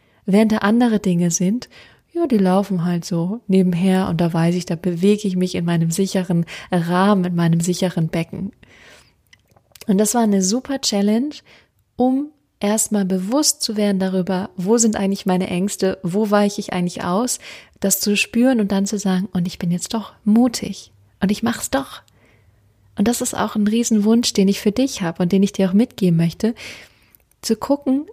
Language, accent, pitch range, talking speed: German, German, 180-220 Hz, 190 wpm